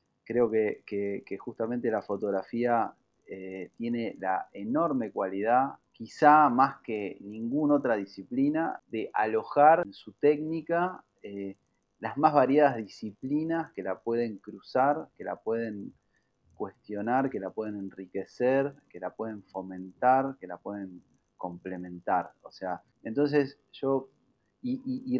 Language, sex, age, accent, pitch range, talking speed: Spanish, male, 30-49, Argentinian, 100-130 Hz, 130 wpm